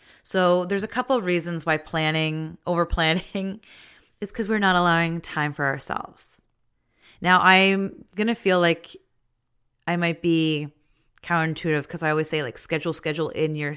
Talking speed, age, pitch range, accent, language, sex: 160 wpm, 30-49, 155-185 Hz, American, English, female